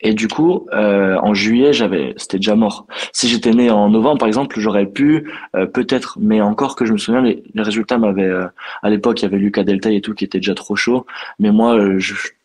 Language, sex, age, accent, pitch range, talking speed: French, male, 20-39, French, 100-130 Hz, 235 wpm